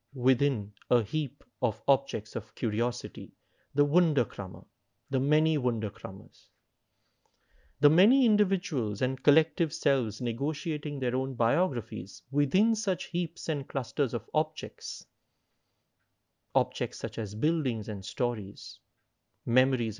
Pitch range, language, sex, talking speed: 110-145 Hz, English, male, 110 wpm